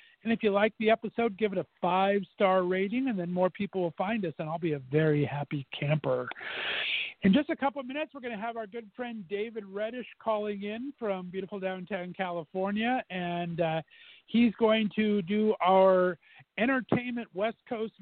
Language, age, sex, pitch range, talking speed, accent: English, 50-69, male, 175-220 Hz, 185 wpm, American